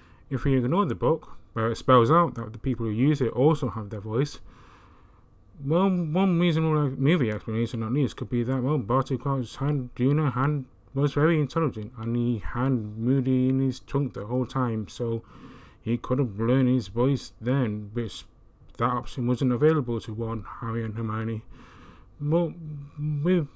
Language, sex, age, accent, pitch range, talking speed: English, male, 20-39, British, 115-155 Hz, 175 wpm